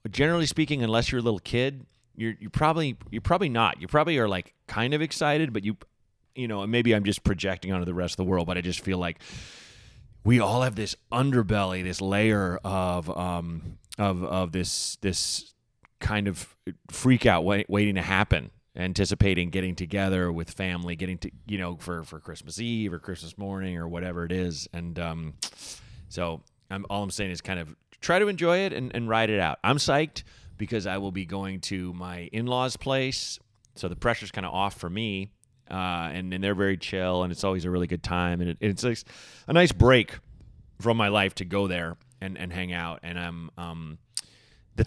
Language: English